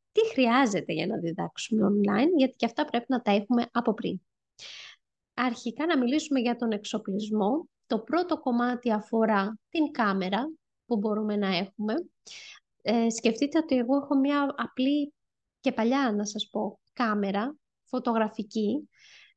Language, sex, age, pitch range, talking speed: Greek, female, 20-39, 220-265 Hz, 135 wpm